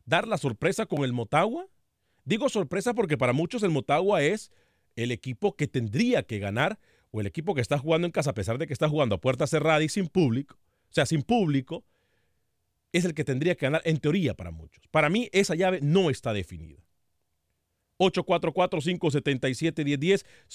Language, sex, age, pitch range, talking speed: Spanish, male, 40-59, 130-190 Hz, 180 wpm